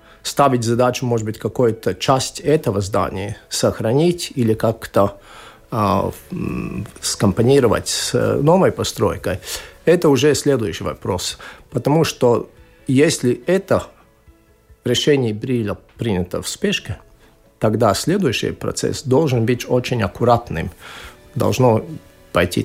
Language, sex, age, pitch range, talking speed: Russian, male, 50-69, 115-145 Hz, 100 wpm